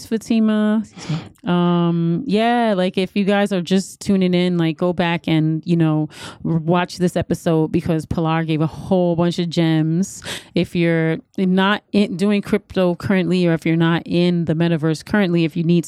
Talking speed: 170 wpm